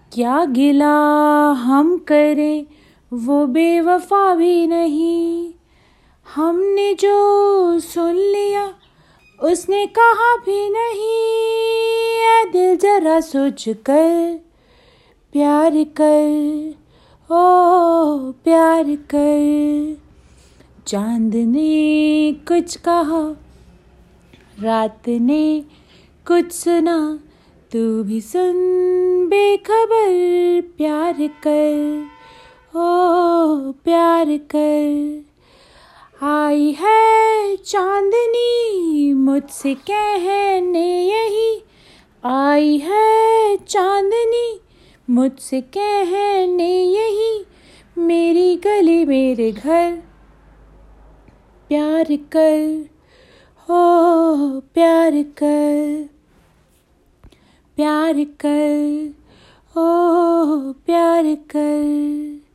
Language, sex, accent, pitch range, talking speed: Hindi, female, native, 295-365 Hz, 65 wpm